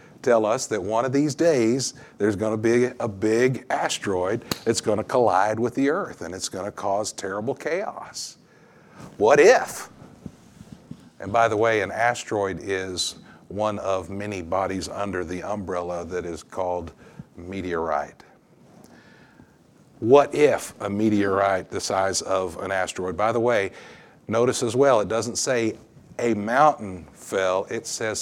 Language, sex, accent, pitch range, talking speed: English, male, American, 95-120 Hz, 150 wpm